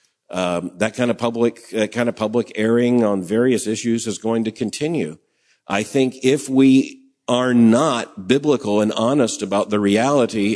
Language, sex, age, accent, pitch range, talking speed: English, male, 50-69, American, 105-125 Hz, 165 wpm